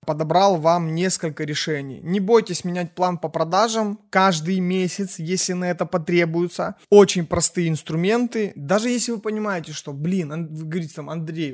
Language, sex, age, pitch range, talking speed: Russian, male, 20-39, 155-195 Hz, 150 wpm